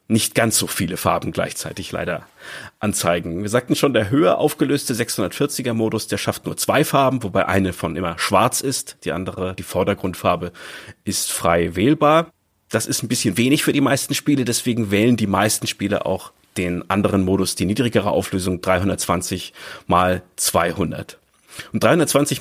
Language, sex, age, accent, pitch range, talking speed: German, male, 30-49, German, 95-125 Hz, 160 wpm